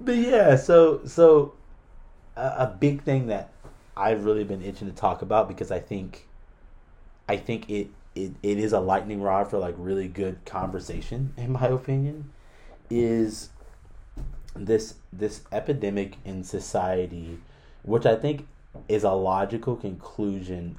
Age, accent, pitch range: 30-49, American, 85-105 Hz